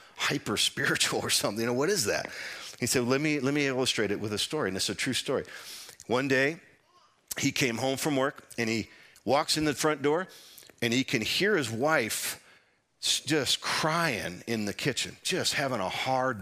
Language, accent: English, American